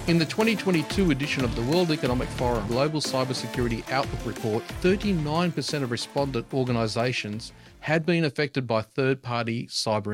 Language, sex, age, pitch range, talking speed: English, male, 40-59, 120-155 Hz, 135 wpm